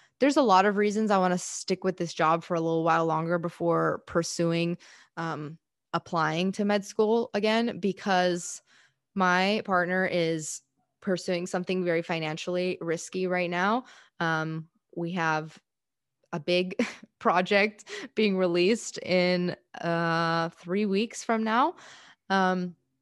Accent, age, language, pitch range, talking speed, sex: American, 20-39, English, 170-205 Hz, 135 wpm, female